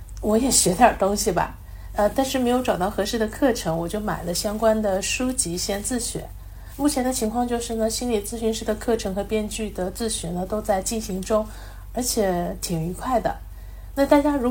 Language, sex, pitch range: Chinese, female, 195-245 Hz